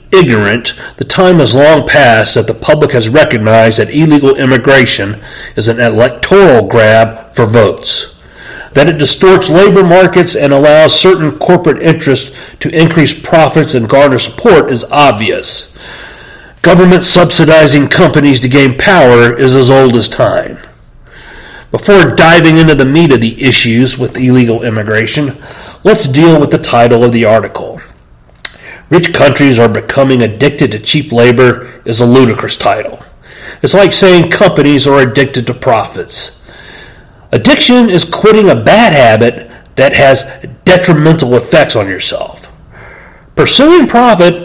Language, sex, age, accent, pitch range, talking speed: English, male, 40-59, American, 125-170 Hz, 140 wpm